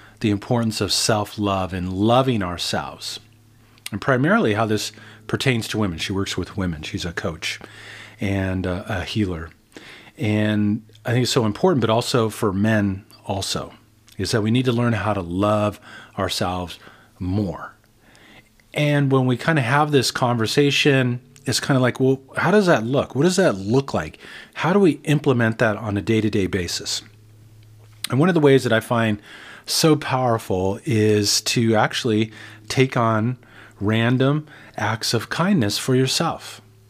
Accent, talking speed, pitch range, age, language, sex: American, 160 wpm, 105-130 Hz, 40-59, English, male